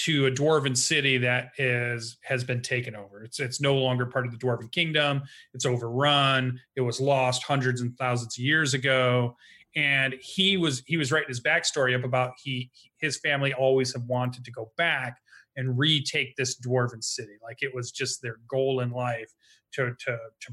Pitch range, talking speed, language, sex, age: 125-145 Hz, 190 wpm, English, male, 30-49